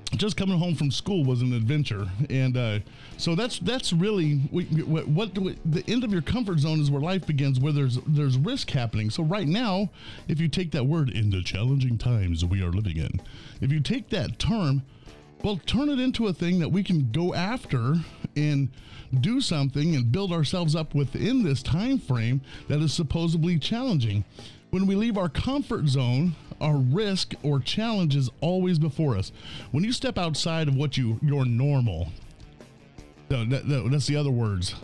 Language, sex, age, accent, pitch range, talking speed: English, male, 50-69, American, 120-170 Hz, 185 wpm